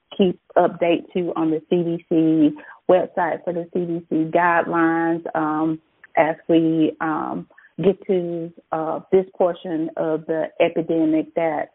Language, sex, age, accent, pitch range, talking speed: English, female, 30-49, American, 160-180 Hz, 135 wpm